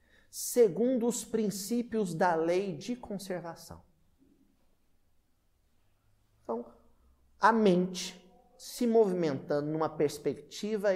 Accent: Brazilian